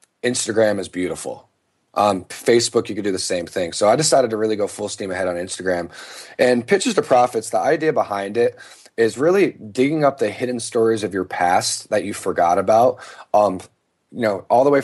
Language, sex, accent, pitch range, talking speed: English, male, American, 100-125 Hz, 200 wpm